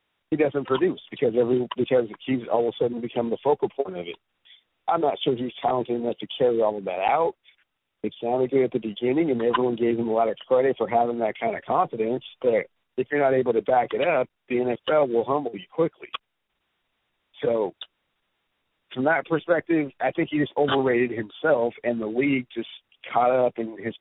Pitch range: 115-135 Hz